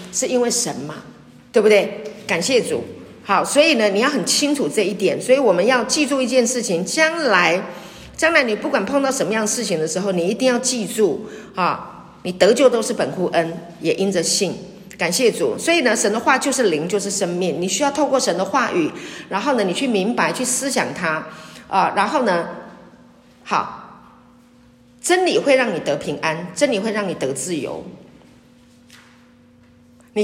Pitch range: 185-285 Hz